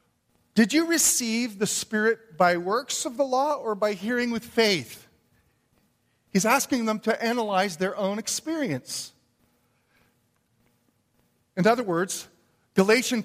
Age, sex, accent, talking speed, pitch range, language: 40-59, male, American, 120 wpm, 160-240 Hz, English